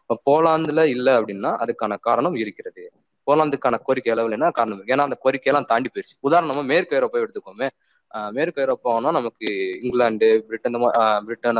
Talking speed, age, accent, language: 140 wpm, 20-39, native, Tamil